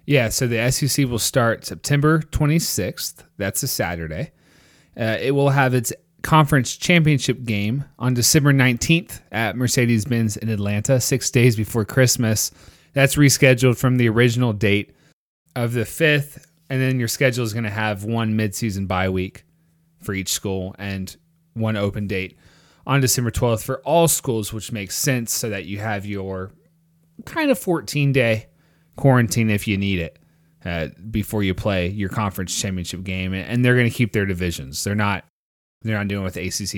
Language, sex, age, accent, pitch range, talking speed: English, male, 30-49, American, 100-130 Hz, 170 wpm